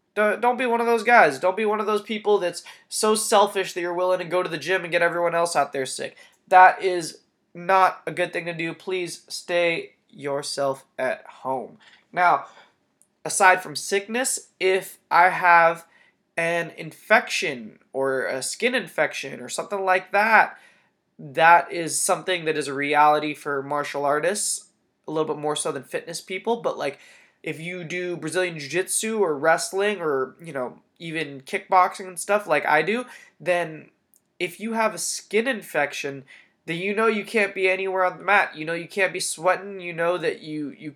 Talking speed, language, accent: 185 wpm, English, American